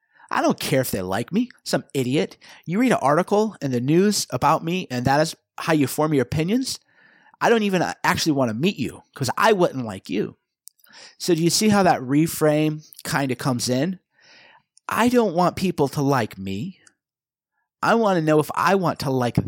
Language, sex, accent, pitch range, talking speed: English, male, American, 130-180 Hz, 205 wpm